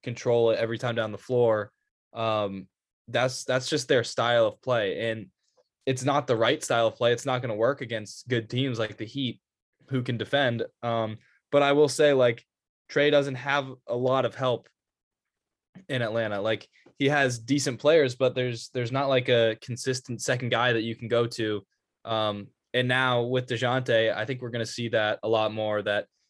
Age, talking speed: 10-29, 195 wpm